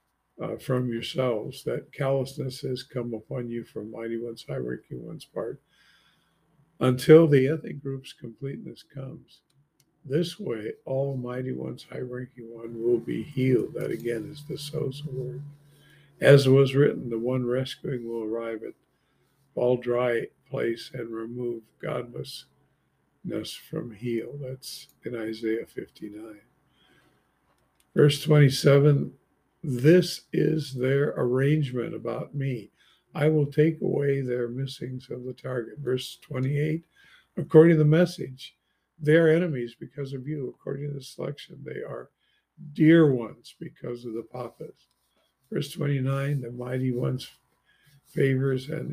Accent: American